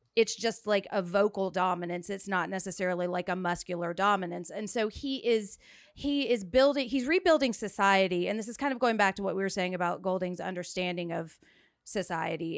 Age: 30-49